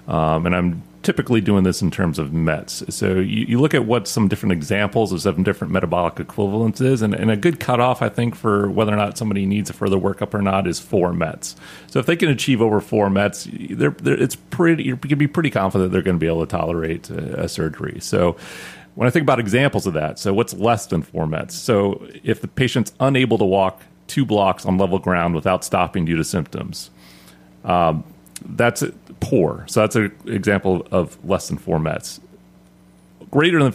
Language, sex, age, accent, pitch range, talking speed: English, male, 30-49, American, 90-115 Hz, 210 wpm